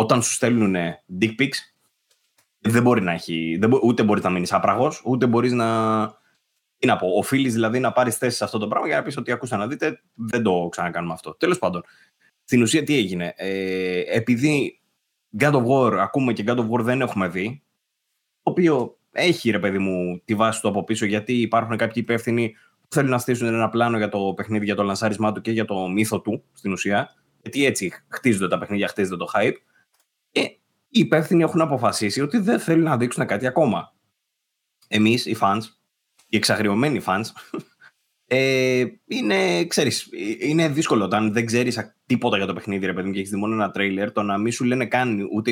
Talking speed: 185 wpm